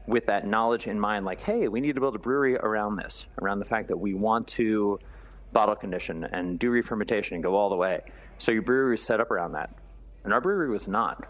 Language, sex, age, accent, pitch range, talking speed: English, male, 30-49, American, 100-125 Hz, 240 wpm